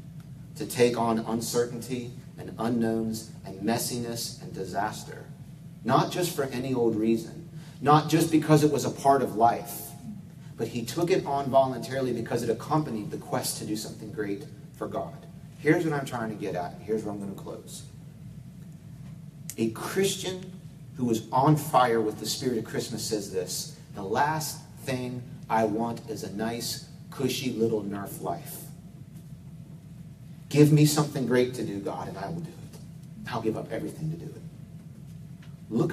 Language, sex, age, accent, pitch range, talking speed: English, male, 40-59, American, 115-155 Hz, 165 wpm